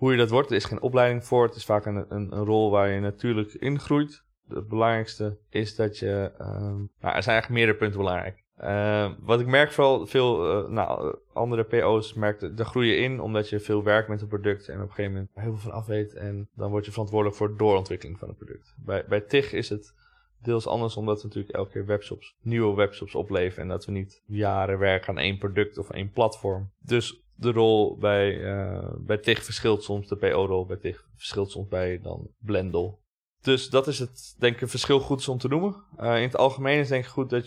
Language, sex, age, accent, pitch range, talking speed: Dutch, male, 20-39, Dutch, 105-125 Hz, 230 wpm